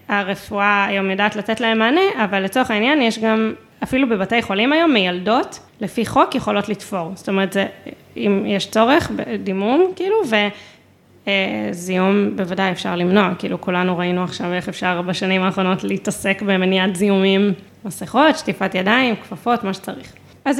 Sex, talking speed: female, 145 wpm